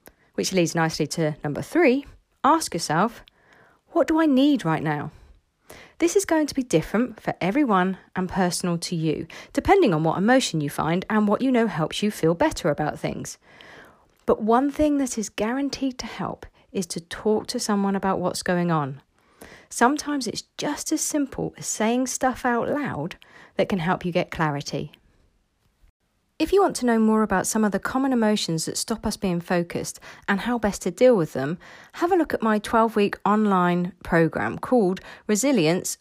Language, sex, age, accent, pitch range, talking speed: English, female, 40-59, British, 170-240 Hz, 180 wpm